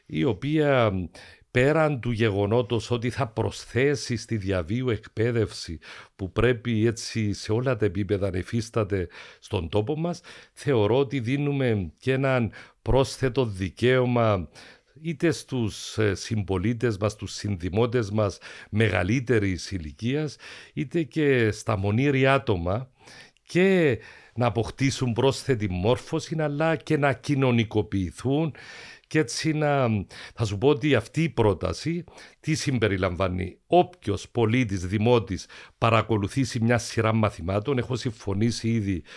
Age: 50-69